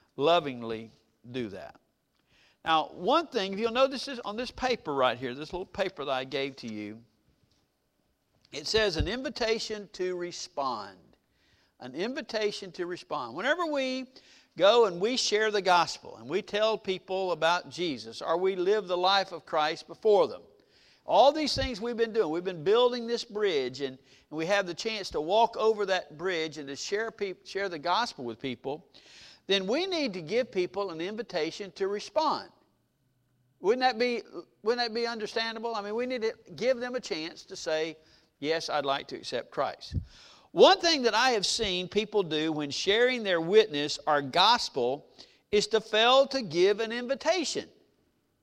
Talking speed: 175 wpm